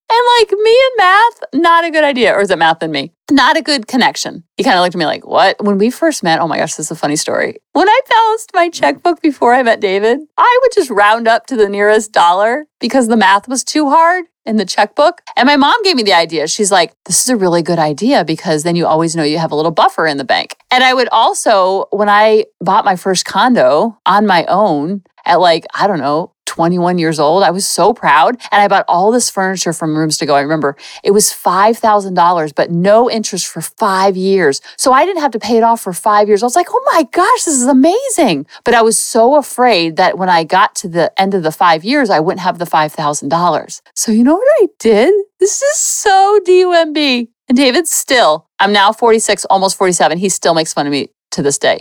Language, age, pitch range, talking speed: English, 40-59, 175-290 Hz, 240 wpm